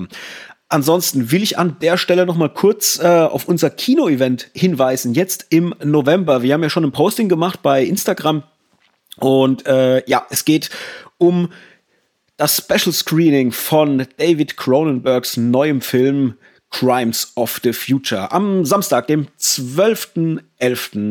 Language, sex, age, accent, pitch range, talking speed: German, male, 30-49, German, 125-155 Hz, 140 wpm